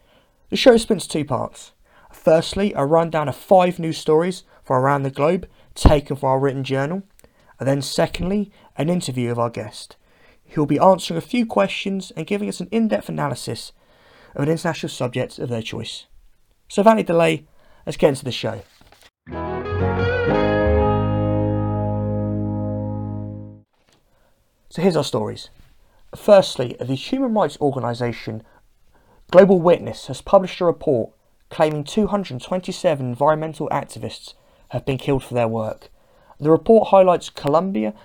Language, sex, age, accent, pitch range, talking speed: English, male, 30-49, British, 105-170 Hz, 135 wpm